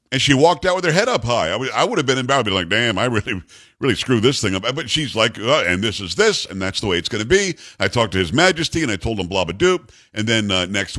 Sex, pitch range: male, 105-140 Hz